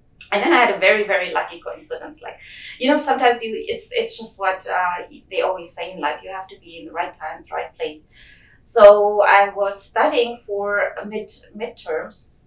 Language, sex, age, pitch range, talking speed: English, female, 30-49, 190-285 Hz, 200 wpm